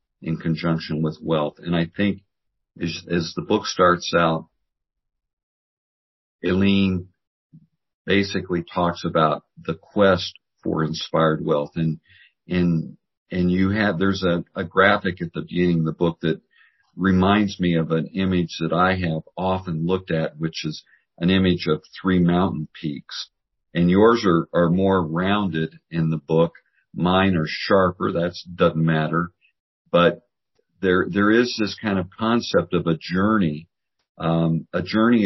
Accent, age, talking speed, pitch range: American, 50-69, 145 wpm, 80-95 Hz